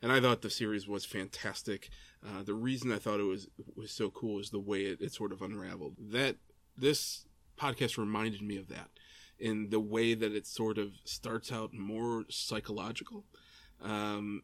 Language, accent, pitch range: English, American, 105-120 Hz